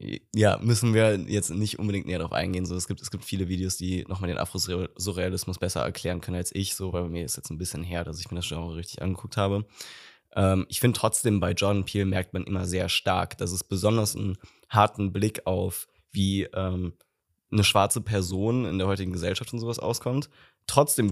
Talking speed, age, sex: 210 wpm, 20-39, male